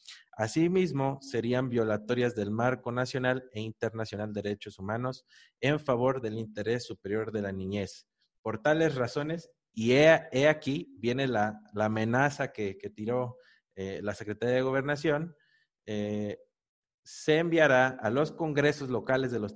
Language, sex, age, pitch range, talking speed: Spanish, male, 30-49, 110-135 Hz, 145 wpm